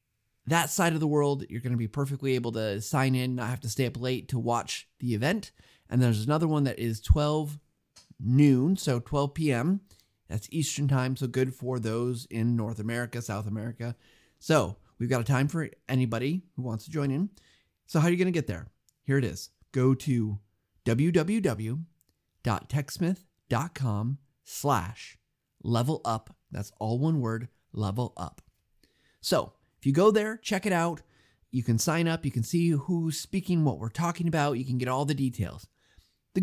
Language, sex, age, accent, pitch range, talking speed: English, male, 30-49, American, 115-160 Hz, 180 wpm